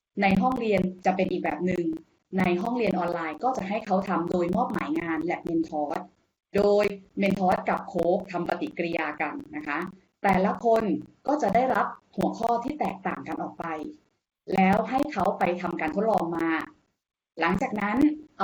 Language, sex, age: Thai, female, 20-39